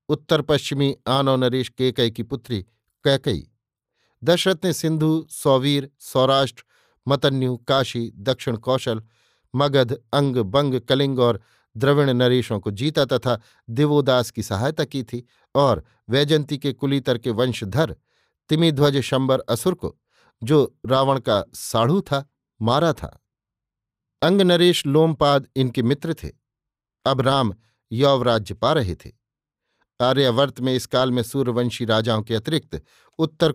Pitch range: 115-145 Hz